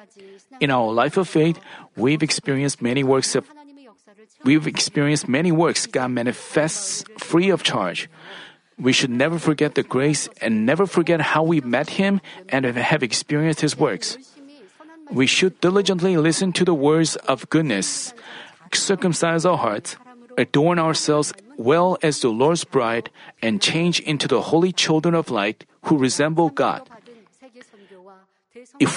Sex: male